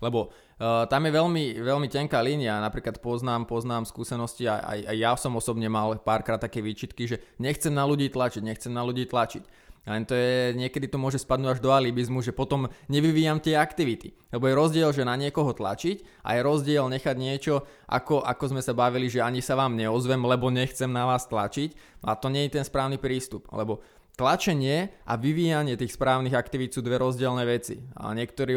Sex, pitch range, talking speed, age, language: male, 120-140 Hz, 190 wpm, 20-39, Slovak